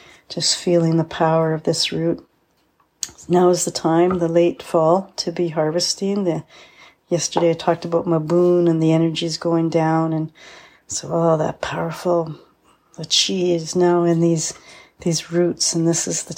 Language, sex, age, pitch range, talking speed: English, female, 40-59, 165-175 Hz, 170 wpm